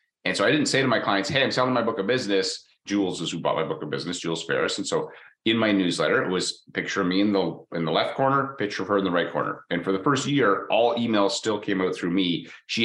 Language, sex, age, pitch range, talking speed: English, male, 30-49, 85-105 Hz, 285 wpm